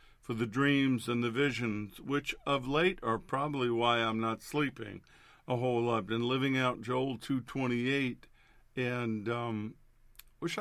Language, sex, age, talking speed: English, male, 50-69, 145 wpm